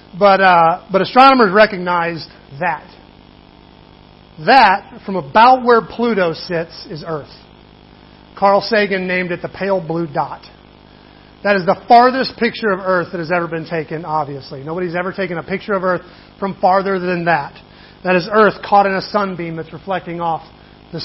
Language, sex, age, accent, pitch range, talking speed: English, male, 40-59, American, 155-195 Hz, 165 wpm